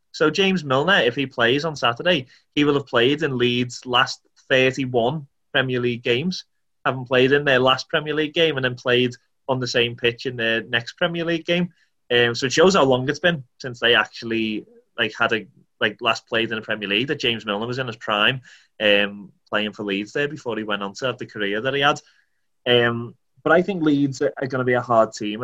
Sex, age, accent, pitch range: male, 20-39, British, 115-135 Hz